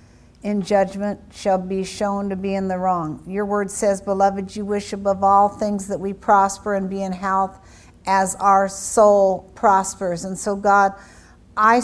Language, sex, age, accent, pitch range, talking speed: English, female, 50-69, American, 190-215 Hz, 170 wpm